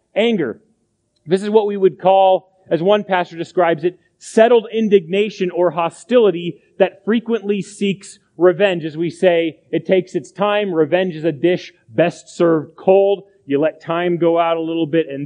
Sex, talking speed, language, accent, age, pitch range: male, 170 wpm, English, American, 30-49, 165-200 Hz